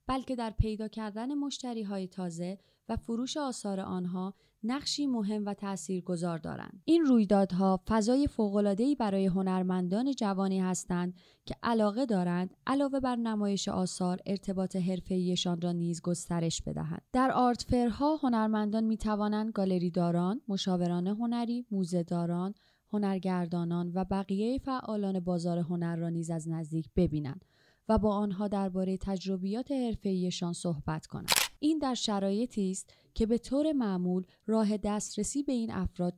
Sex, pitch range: female, 175-225 Hz